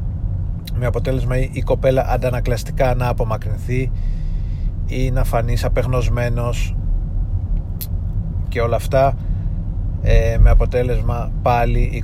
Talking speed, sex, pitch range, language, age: 90 wpm, male, 90-120 Hz, Greek, 30-49